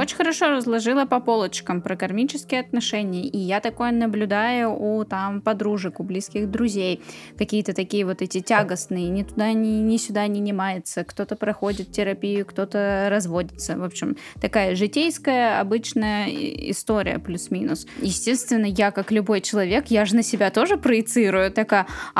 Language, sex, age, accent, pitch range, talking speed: Russian, female, 10-29, native, 200-245 Hz, 145 wpm